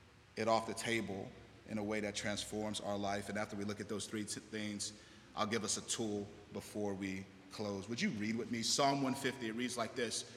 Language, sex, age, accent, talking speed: English, male, 30-49, American, 220 wpm